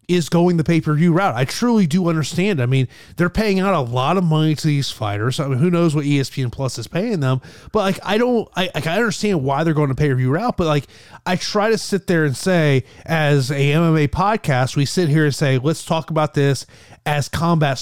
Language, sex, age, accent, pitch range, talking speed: English, male, 30-49, American, 130-165 Hz, 250 wpm